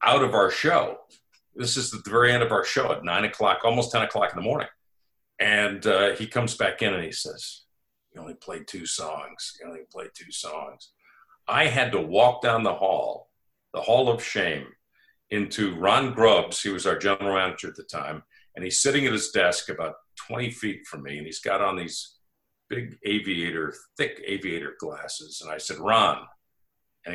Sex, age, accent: male, 50-69, American